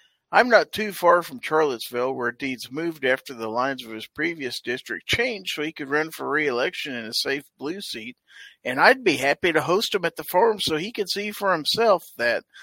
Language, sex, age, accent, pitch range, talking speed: English, male, 50-69, American, 130-175 Hz, 215 wpm